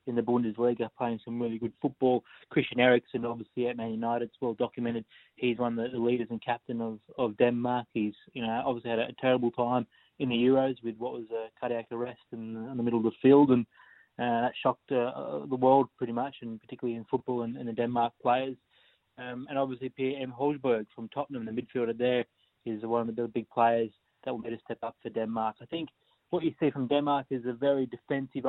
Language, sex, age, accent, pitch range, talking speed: English, male, 20-39, Australian, 115-130 Hz, 230 wpm